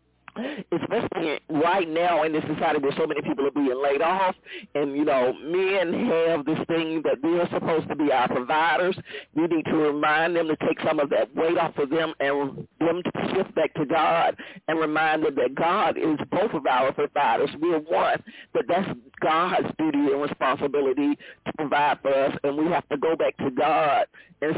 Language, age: English, 50-69